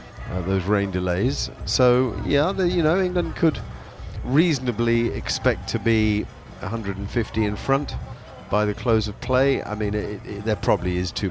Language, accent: English, British